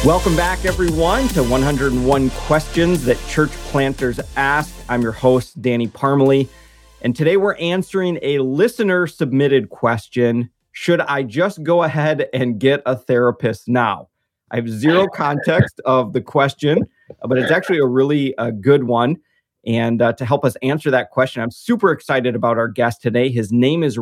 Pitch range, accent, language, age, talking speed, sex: 115-140 Hz, American, English, 30-49, 165 wpm, male